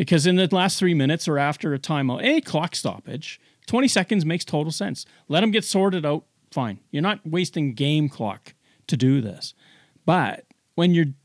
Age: 40-59